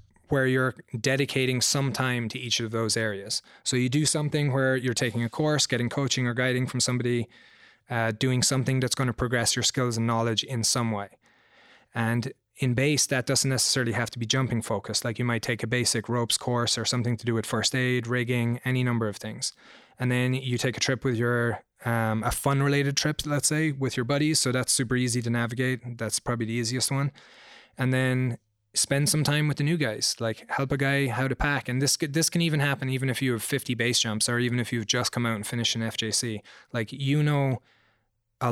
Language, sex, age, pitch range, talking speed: English, male, 20-39, 115-135 Hz, 220 wpm